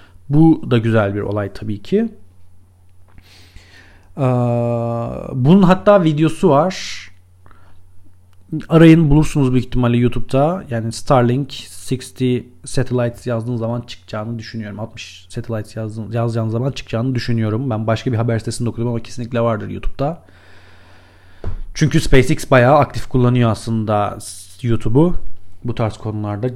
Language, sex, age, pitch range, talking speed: Turkish, male, 40-59, 105-135 Hz, 115 wpm